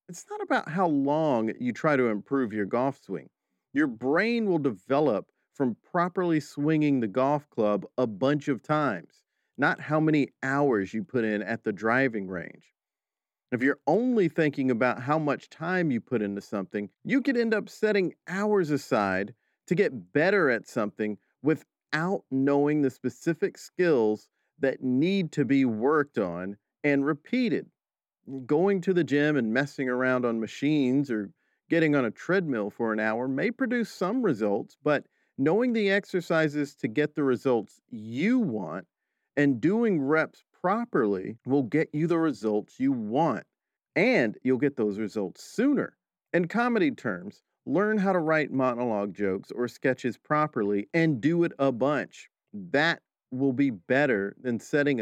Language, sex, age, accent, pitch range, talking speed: English, male, 40-59, American, 120-170 Hz, 160 wpm